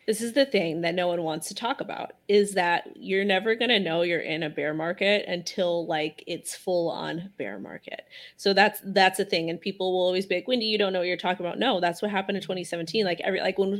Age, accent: 30-49, American